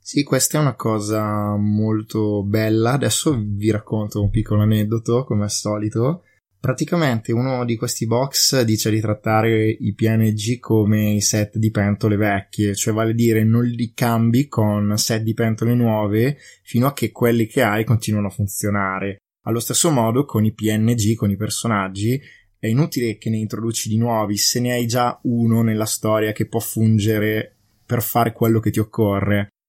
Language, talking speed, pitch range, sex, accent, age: Italian, 170 wpm, 105-120 Hz, male, native, 20-39